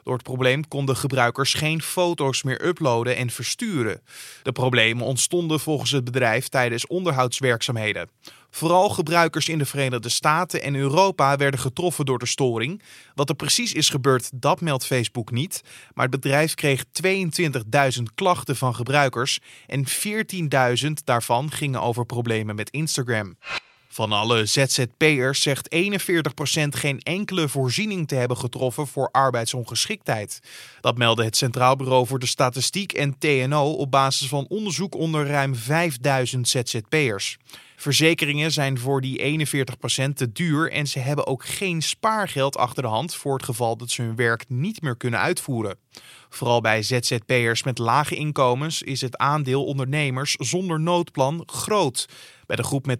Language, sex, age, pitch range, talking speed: Dutch, male, 20-39, 125-155 Hz, 150 wpm